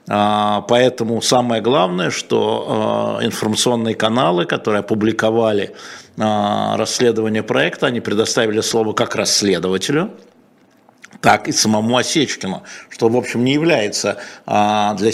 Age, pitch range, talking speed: 50-69, 110-125 Hz, 100 wpm